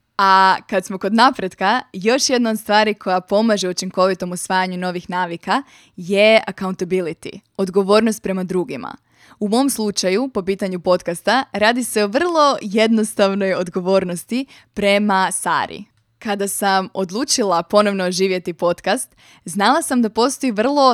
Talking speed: 130 wpm